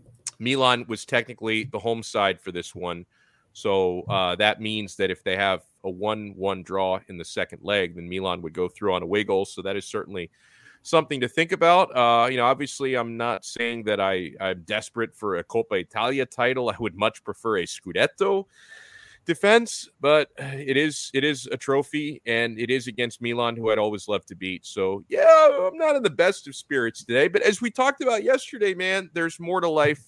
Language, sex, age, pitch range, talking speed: English, male, 30-49, 110-160 Hz, 205 wpm